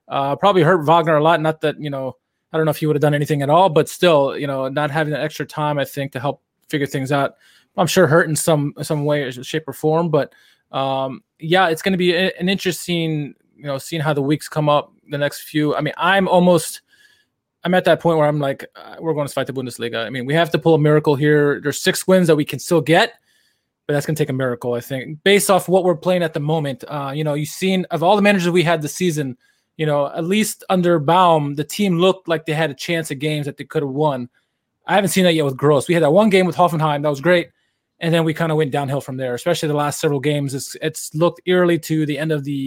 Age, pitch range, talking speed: 20-39, 145-170 Hz, 270 wpm